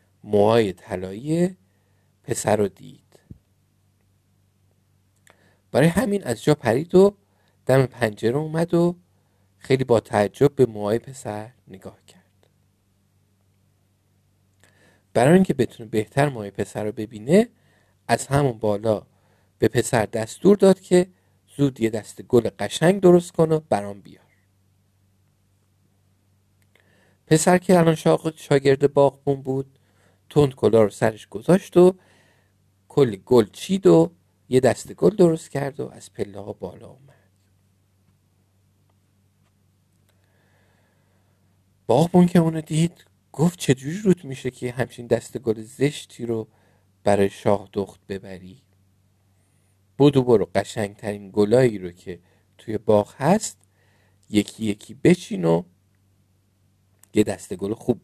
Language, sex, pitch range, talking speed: Persian, male, 95-135 Hz, 115 wpm